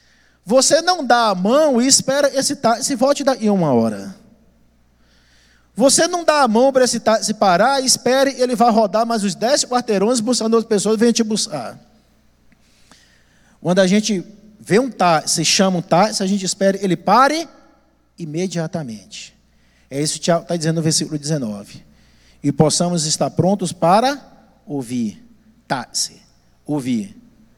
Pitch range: 160-240 Hz